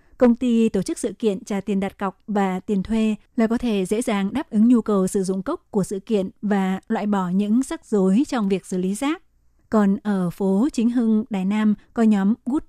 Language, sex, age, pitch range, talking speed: Vietnamese, female, 20-39, 200-235 Hz, 230 wpm